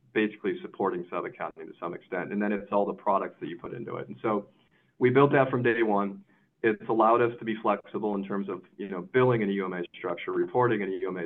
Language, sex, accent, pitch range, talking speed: English, male, American, 100-125 Hz, 240 wpm